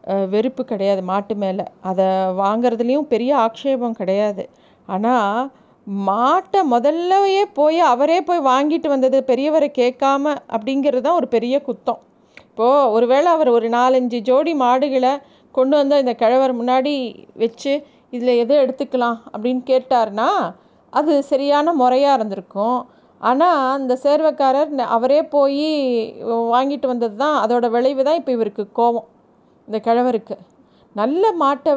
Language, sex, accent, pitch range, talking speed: Tamil, female, native, 230-285 Hz, 120 wpm